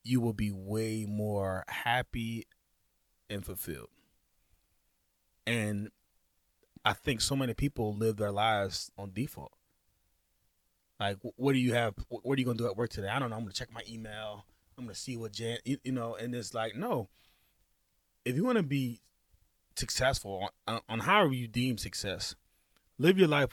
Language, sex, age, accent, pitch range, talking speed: English, male, 30-49, American, 100-140 Hz, 175 wpm